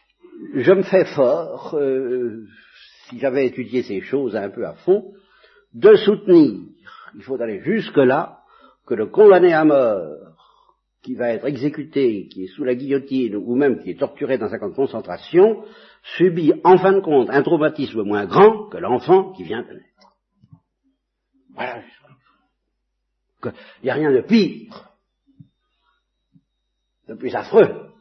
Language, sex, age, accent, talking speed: French, male, 60-79, French, 145 wpm